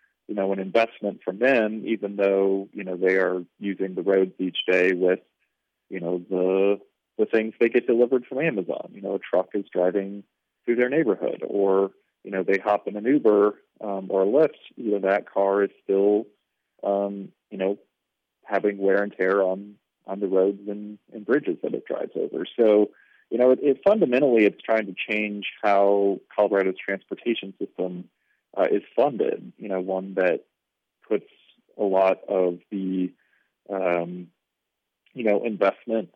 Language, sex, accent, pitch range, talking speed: English, male, American, 95-105 Hz, 170 wpm